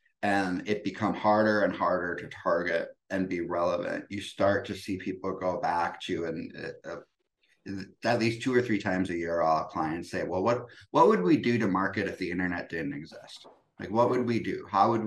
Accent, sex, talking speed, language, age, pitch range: American, male, 205 wpm, English, 30-49, 90-105 Hz